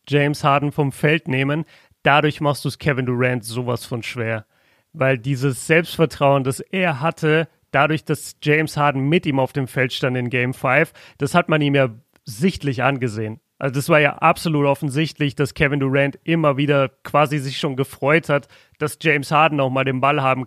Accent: German